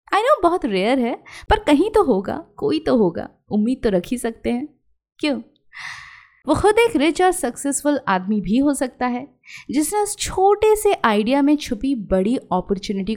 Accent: native